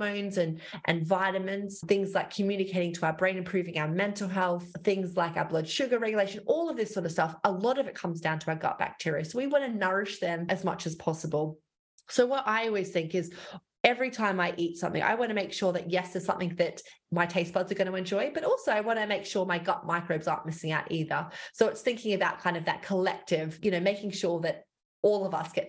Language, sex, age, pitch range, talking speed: English, female, 20-39, 165-200 Hz, 245 wpm